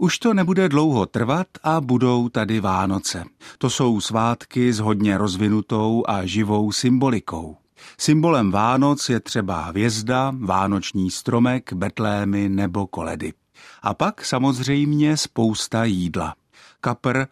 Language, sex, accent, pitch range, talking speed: Czech, male, native, 105-140 Hz, 120 wpm